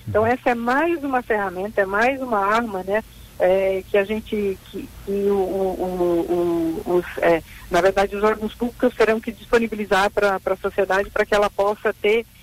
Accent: Brazilian